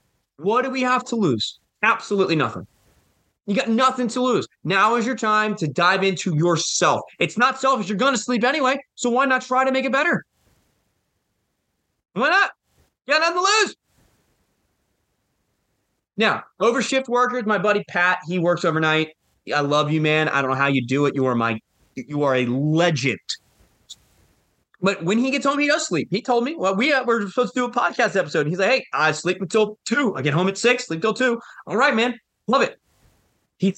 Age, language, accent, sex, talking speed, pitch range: 20-39, English, American, male, 200 wpm, 150-240 Hz